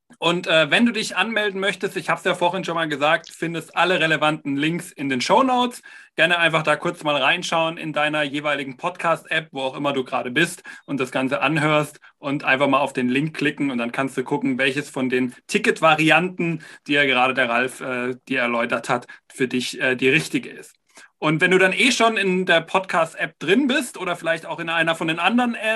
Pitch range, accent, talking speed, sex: 150-195 Hz, German, 215 wpm, male